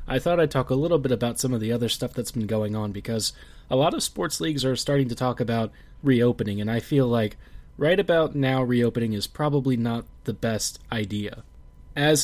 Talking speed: 215 wpm